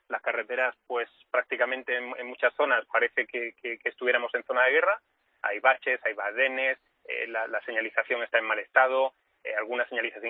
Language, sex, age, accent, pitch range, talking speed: Spanish, male, 30-49, Spanish, 115-165 Hz, 180 wpm